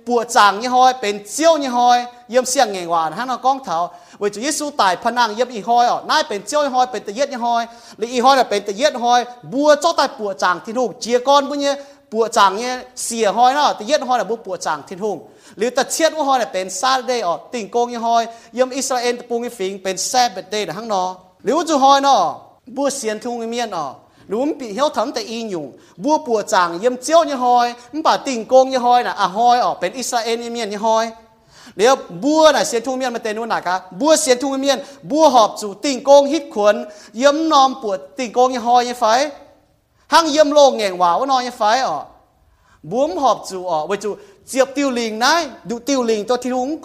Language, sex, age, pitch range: English, male, 30-49, 215-275 Hz